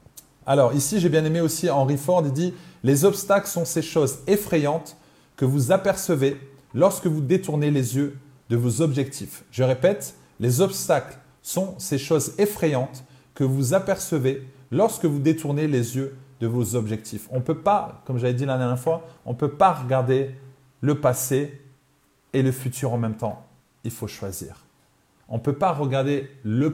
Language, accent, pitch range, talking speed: French, French, 125-165 Hz, 175 wpm